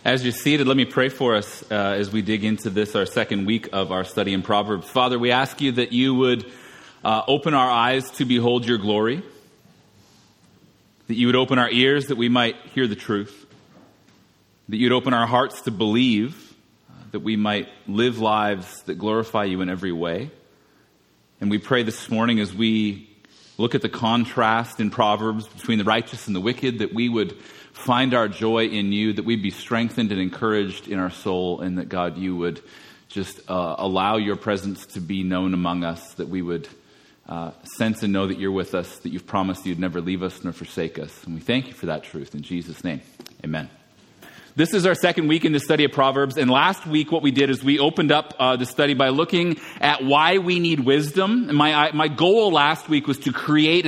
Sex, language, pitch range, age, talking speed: male, English, 105-140 Hz, 30-49, 210 wpm